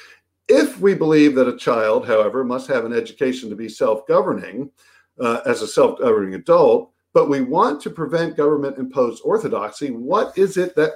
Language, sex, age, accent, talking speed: English, male, 50-69, American, 160 wpm